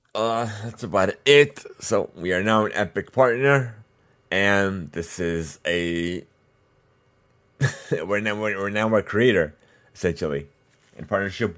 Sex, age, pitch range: male, 30-49, 85-105 Hz